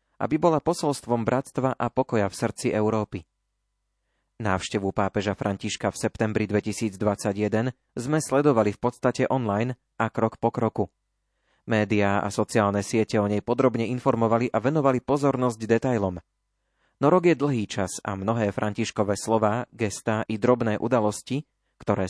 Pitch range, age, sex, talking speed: 100-125 Hz, 30-49, male, 135 wpm